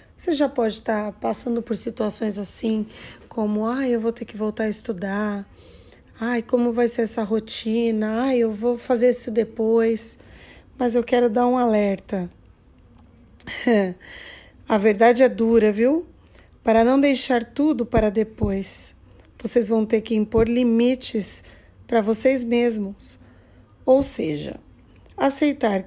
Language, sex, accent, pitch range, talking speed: Portuguese, female, Brazilian, 210-245 Hz, 135 wpm